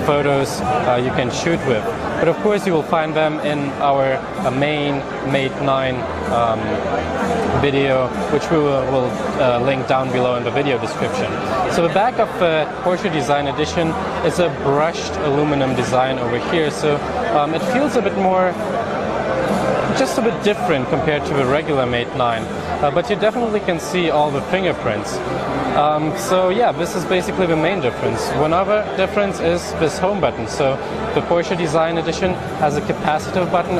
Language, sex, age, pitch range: Chinese, male, 20-39, 135-175 Hz